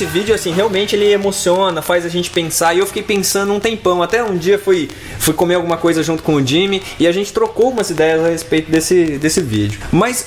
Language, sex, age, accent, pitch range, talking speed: Portuguese, male, 20-39, Brazilian, 155-215 Hz, 235 wpm